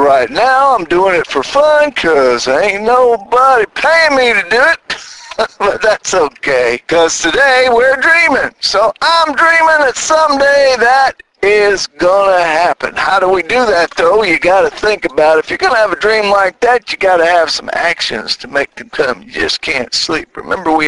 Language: English